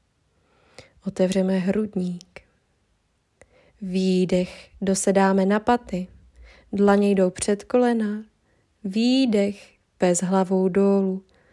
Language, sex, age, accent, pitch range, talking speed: Czech, female, 20-39, native, 180-215 Hz, 75 wpm